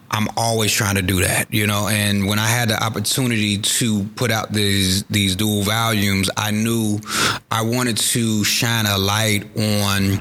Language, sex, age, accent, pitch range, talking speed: English, male, 30-49, American, 100-115 Hz, 175 wpm